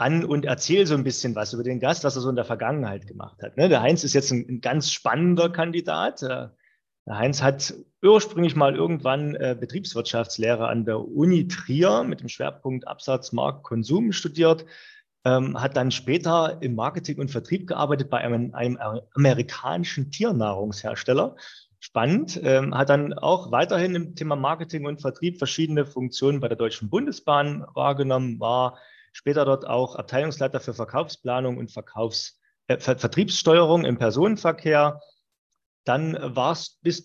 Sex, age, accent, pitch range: male, 30-49, German, 125-160 Hz